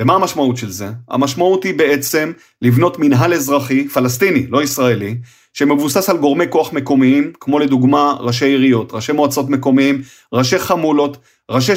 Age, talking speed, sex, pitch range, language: 30-49, 145 wpm, male, 135-175 Hz, Hebrew